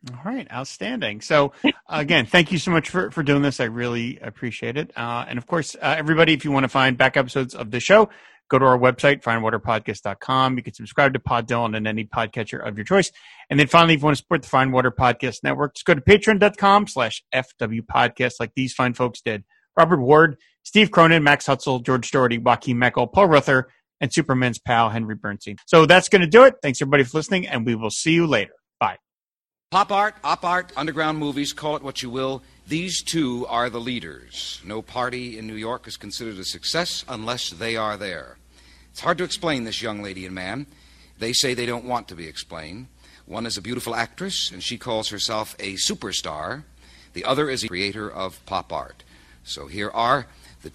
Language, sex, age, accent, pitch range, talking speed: English, male, 30-49, American, 110-150 Hz, 210 wpm